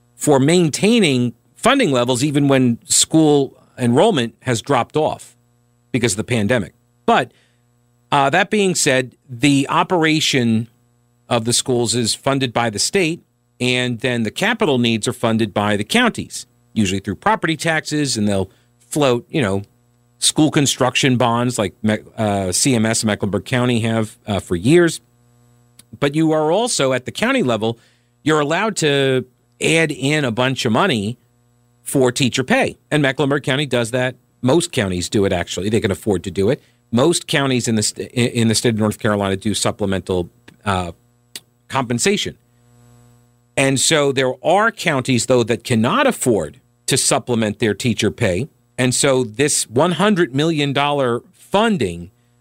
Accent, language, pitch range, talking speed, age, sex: American, English, 120-140 Hz, 150 wpm, 50-69, male